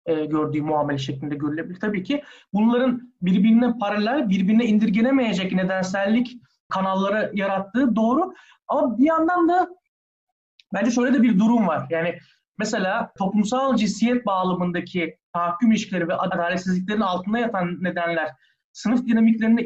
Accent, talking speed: native, 120 wpm